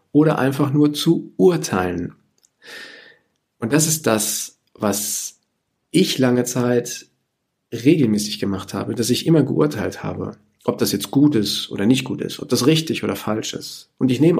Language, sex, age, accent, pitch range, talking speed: German, male, 50-69, German, 105-150 Hz, 165 wpm